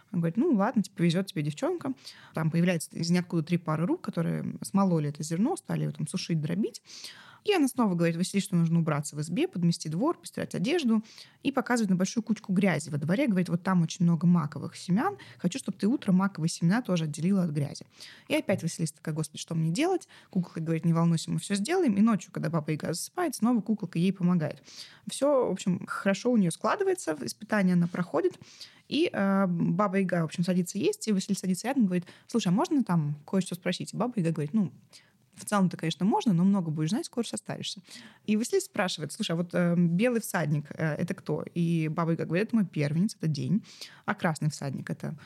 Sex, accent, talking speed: female, native, 210 wpm